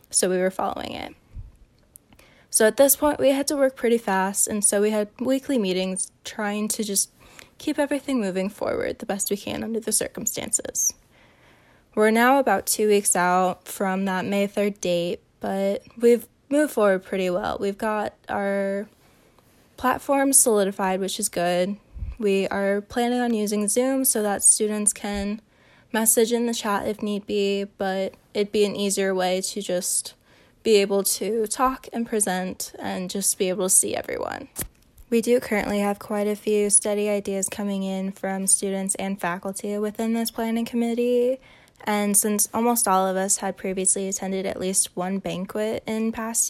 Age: 10-29